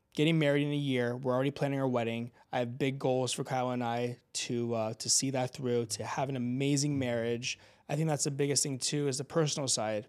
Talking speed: 240 wpm